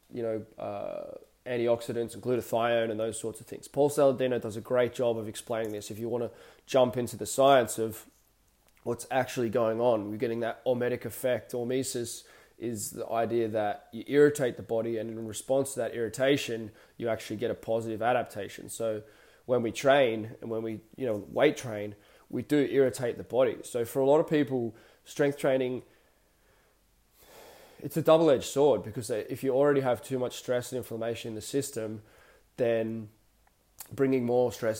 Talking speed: 180 wpm